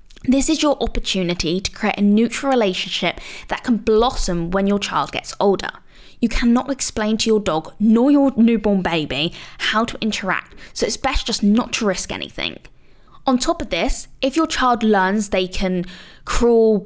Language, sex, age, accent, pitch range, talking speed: English, female, 20-39, British, 185-235 Hz, 175 wpm